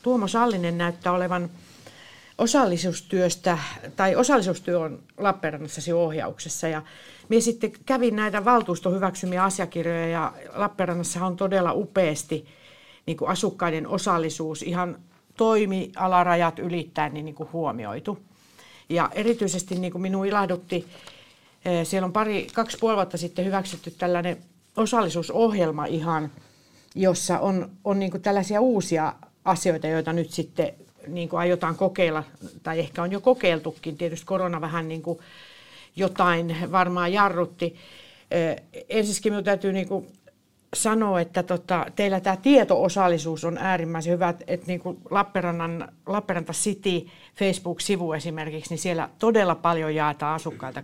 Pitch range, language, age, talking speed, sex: 165-195 Hz, Finnish, 50-69, 115 wpm, female